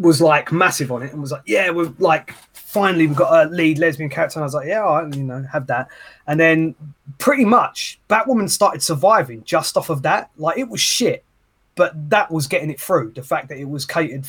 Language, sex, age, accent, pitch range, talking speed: English, male, 20-39, British, 135-175 Hz, 235 wpm